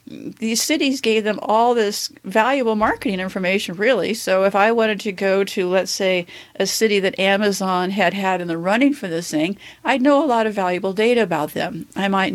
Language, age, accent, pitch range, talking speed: English, 50-69, American, 185-235 Hz, 205 wpm